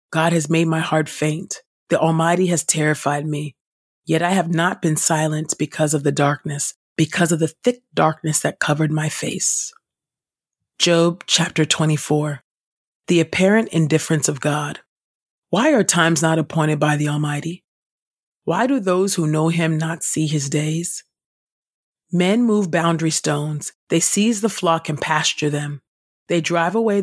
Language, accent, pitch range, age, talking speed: English, American, 150-175 Hz, 40-59, 155 wpm